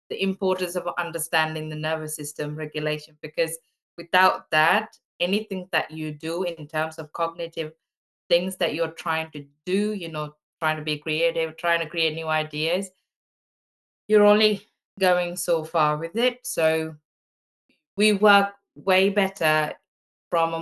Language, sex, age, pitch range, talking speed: English, female, 20-39, 150-180 Hz, 145 wpm